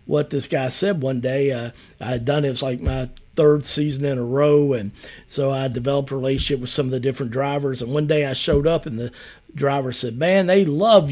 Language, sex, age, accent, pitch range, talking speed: English, male, 50-69, American, 130-175 Hz, 245 wpm